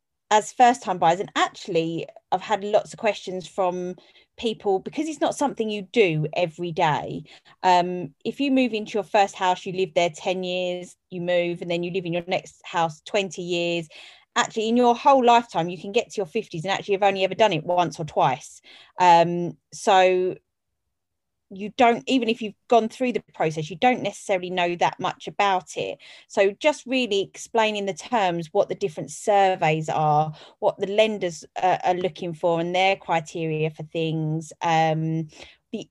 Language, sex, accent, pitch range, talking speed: English, female, British, 170-215 Hz, 180 wpm